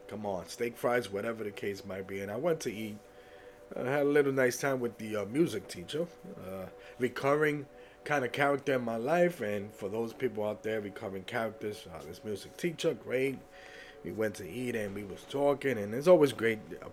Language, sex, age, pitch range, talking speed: English, male, 30-49, 100-140 Hz, 210 wpm